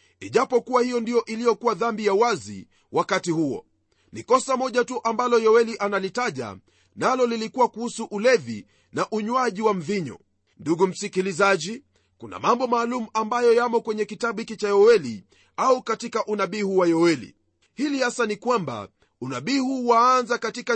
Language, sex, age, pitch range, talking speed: Swahili, male, 40-59, 185-240 Hz, 145 wpm